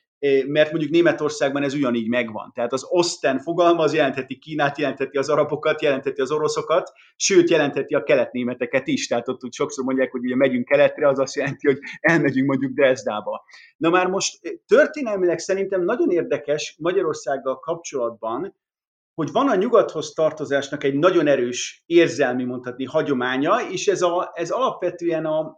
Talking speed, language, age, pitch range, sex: 150 wpm, Hungarian, 30-49, 130-170 Hz, male